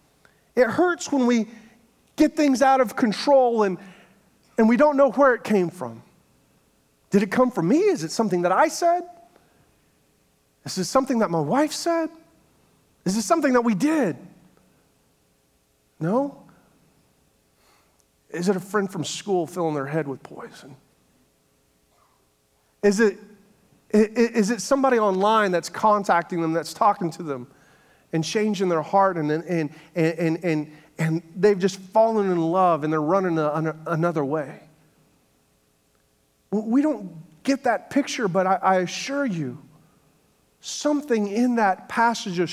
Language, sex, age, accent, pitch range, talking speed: English, male, 40-59, American, 160-235 Hz, 145 wpm